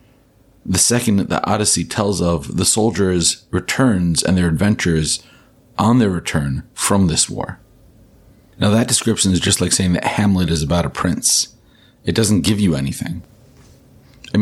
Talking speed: 160 wpm